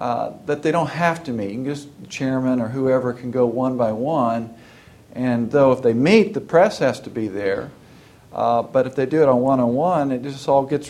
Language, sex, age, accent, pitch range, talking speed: English, male, 50-69, American, 120-140 Hz, 225 wpm